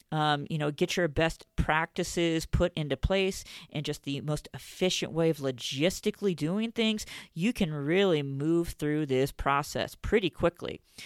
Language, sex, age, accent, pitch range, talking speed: English, female, 40-59, American, 150-195 Hz, 155 wpm